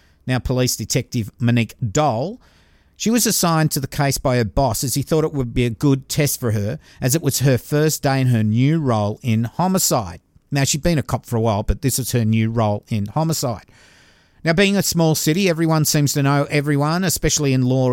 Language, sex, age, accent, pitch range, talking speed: English, male, 50-69, Australian, 125-170 Hz, 220 wpm